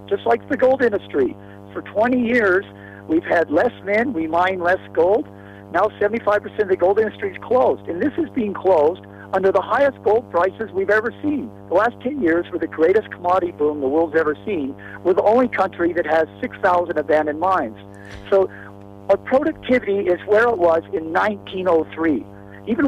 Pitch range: 150-215 Hz